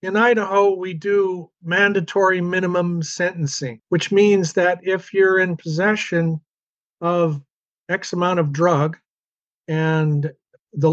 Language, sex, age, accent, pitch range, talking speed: English, male, 50-69, American, 150-180 Hz, 115 wpm